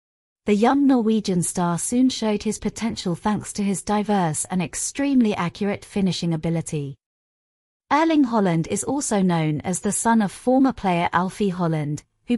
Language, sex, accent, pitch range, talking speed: English, female, British, 170-225 Hz, 150 wpm